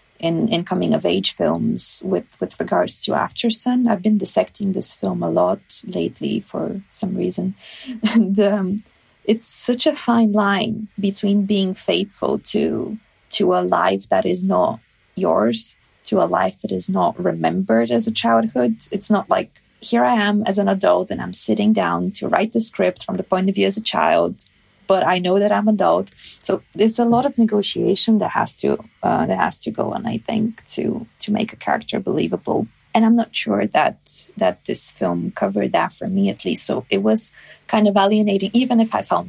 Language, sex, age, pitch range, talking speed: English, female, 20-39, 190-220 Hz, 190 wpm